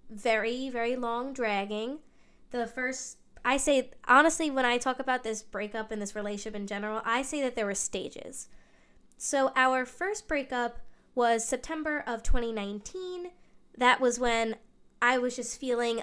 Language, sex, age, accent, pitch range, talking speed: English, female, 20-39, American, 220-275 Hz, 155 wpm